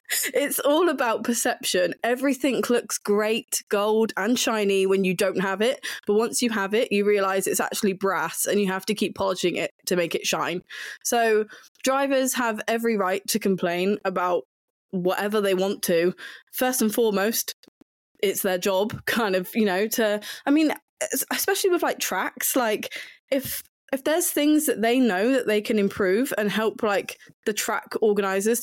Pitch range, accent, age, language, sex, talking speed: 195-235 Hz, British, 20-39, English, female, 175 wpm